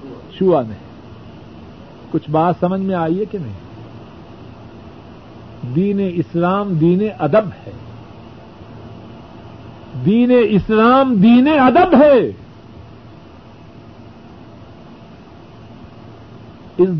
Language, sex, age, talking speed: Urdu, male, 60-79, 65 wpm